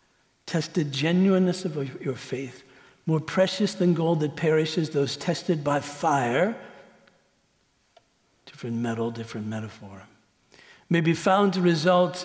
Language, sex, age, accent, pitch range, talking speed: English, male, 60-79, American, 155-210 Hz, 120 wpm